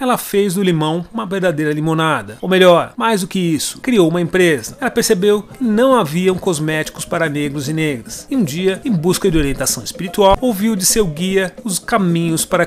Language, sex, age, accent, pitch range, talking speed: Portuguese, male, 30-49, Brazilian, 165-205 Hz, 195 wpm